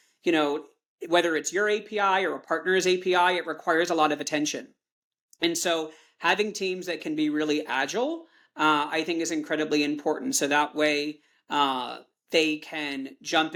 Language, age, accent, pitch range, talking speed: English, 40-59, American, 150-195 Hz, 170 wpm